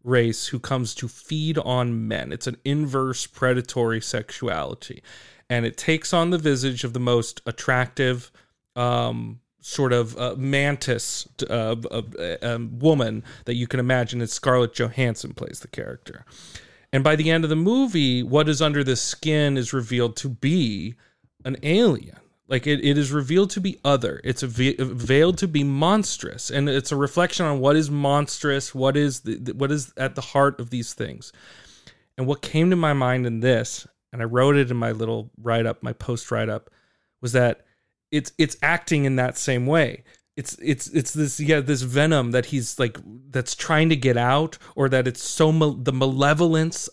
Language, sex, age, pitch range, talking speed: English, male, 40-59, 120-150 Hz, 185 wpm